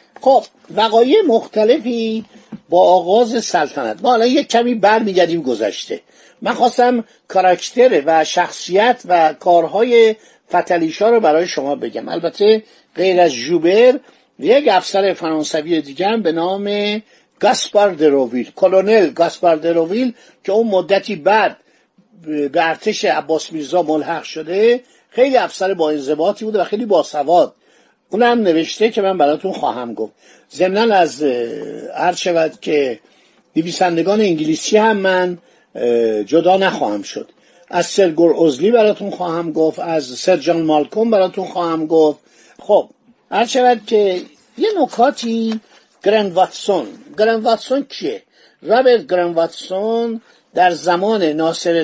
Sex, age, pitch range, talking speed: male, 50-69, 165-225 Hz, 120 wpm